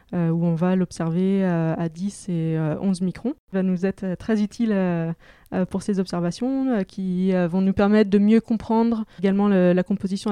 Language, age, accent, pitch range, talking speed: French, 20-39, French, 180-215 Hz, 200 wpm